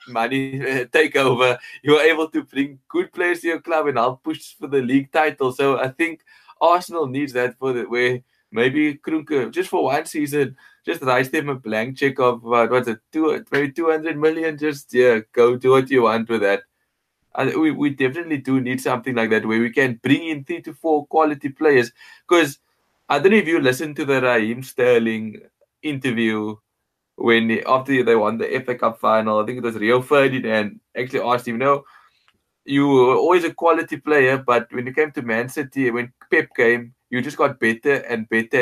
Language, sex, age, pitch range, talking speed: English, male, 20-39, 125-155 Hz, 200 wpm